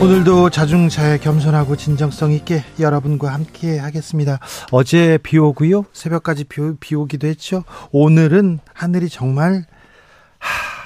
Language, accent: Korean, native